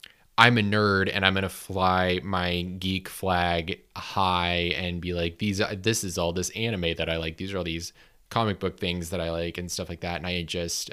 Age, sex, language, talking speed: 20-39, male, English, 235 wpm